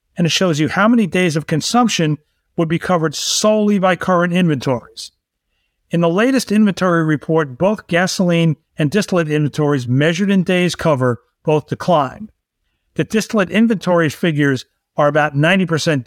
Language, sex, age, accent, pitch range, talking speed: English, male, 50-69, American, 145-185 Hz, 145 wpm